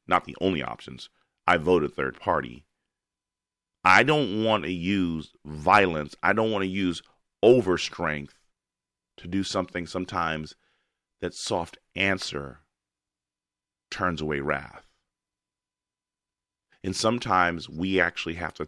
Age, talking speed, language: 40-59, 115 wpm, English